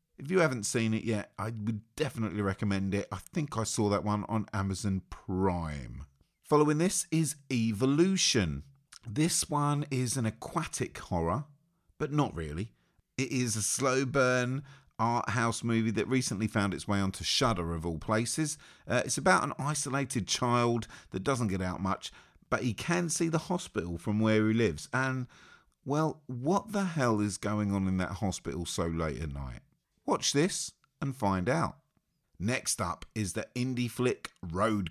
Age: 40-59